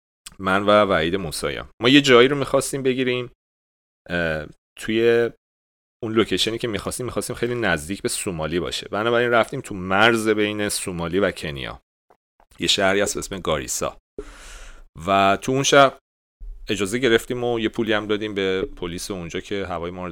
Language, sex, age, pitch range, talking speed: English, male, 40-59, 85-115 Hz, 160 wpm